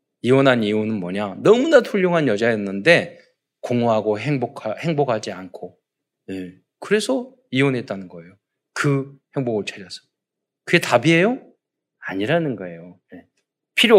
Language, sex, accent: Korean, male, native